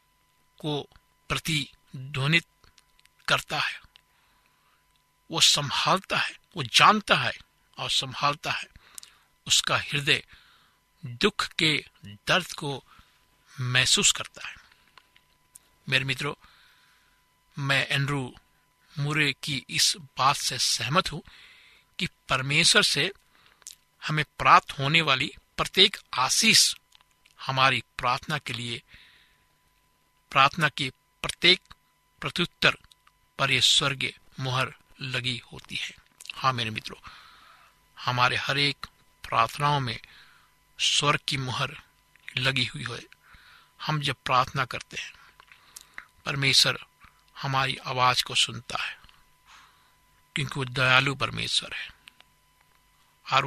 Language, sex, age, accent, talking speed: Hindi, male, 60-79, native, 95 wpm